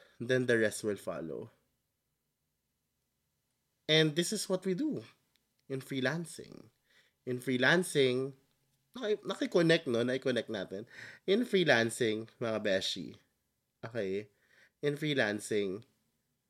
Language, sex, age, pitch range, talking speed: Filipino, male, 20-39, 120-165 Hz, 95 wpm